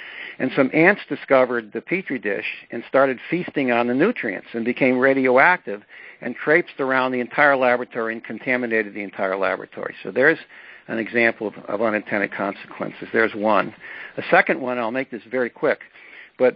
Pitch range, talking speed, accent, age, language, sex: 115-140 Hz, 165 wpm, American, 60-79, English, male